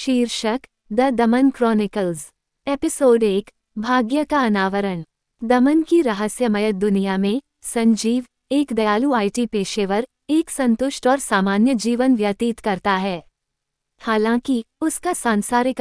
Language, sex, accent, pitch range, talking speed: Hindi, female, native, 210-265 Hz, 115 wpm